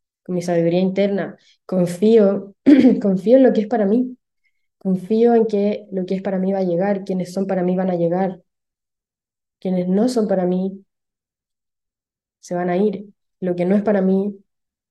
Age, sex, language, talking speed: 20-39, female, Spanish, 180 wpm